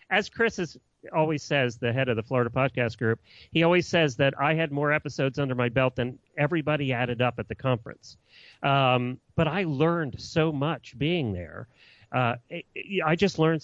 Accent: American